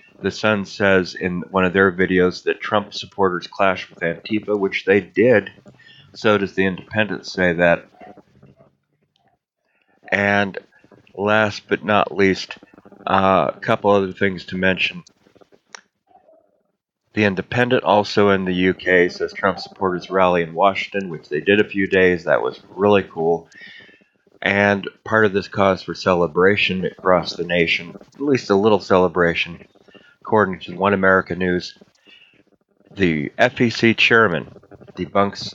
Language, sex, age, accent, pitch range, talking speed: English, male, 40-59, American, 90-105 Hz, 135 wpm